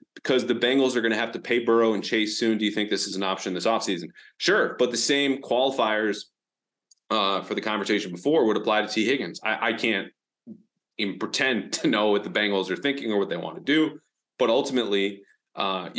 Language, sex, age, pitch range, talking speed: English, male, 30-49, 100-125 Hz, 220 wpm